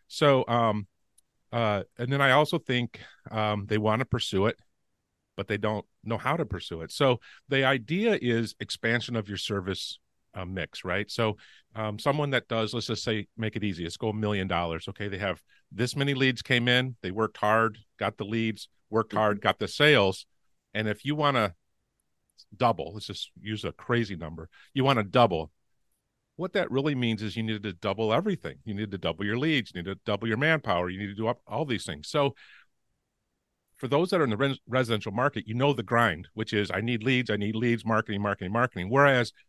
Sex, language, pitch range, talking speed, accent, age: male, English, 100-120 Hz, 210 wpm, American, 50-69